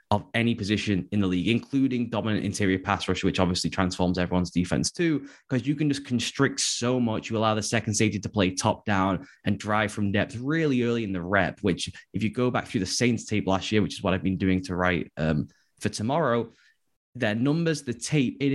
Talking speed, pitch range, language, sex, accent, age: 225 wpm, 100-125 Hz, English, male, British, 10-29